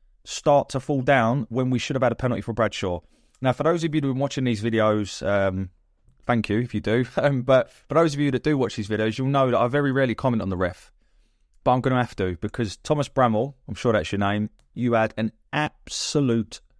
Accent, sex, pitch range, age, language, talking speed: British, male, 95-120 Hz, 20-39, English, 245 wpm